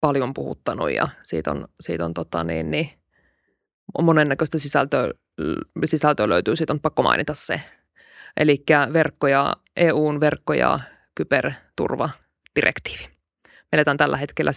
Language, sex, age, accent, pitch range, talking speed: Finnish, female, 20-39, native, 130-155 Hz, 120 wpm